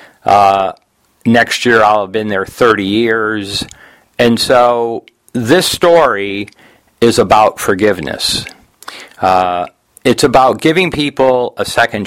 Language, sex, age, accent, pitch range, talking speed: English, male, 50-69, American, 105-135 Hz, 115 wpm